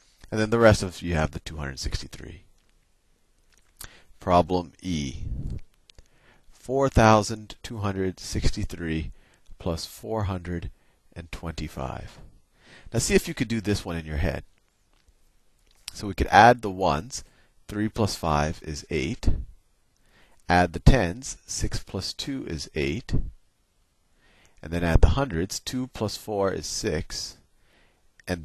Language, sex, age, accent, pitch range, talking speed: English, male, 40-59, American, 80-105 Hz, 115 wpm